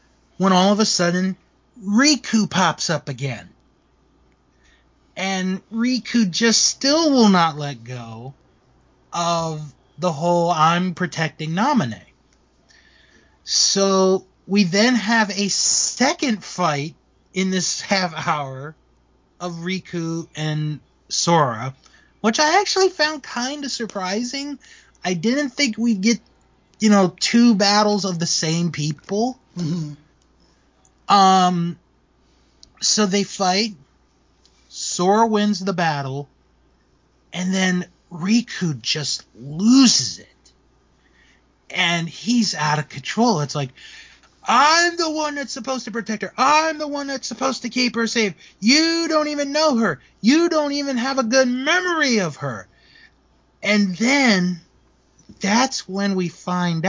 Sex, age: male, 30-49